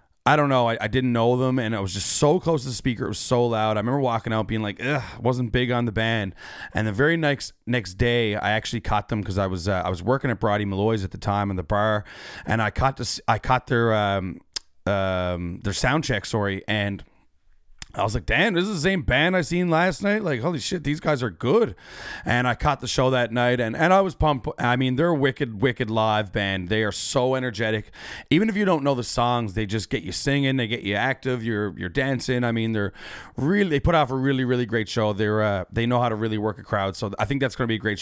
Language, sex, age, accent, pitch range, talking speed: English, male, 30-49, American, 105-130 Hz, 265 wpm